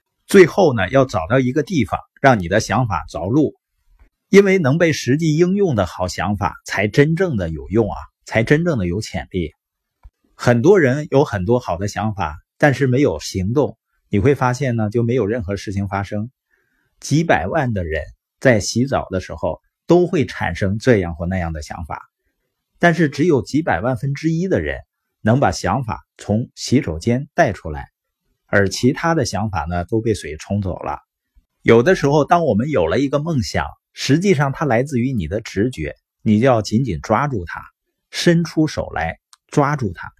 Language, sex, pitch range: Chinese, male, 100-145 Hz